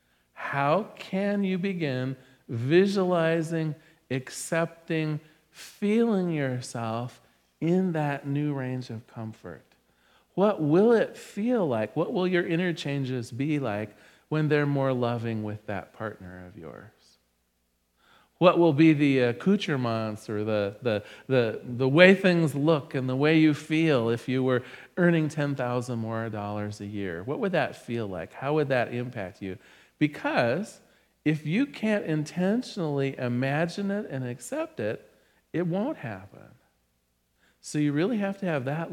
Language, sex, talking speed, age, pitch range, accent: English, male, 135 wpm, 40-59, 120-165 Hz, American